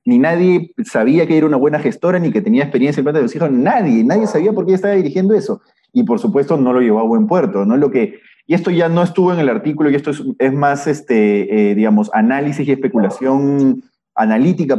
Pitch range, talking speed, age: 145-215 Hz, 215 wpm, 30-49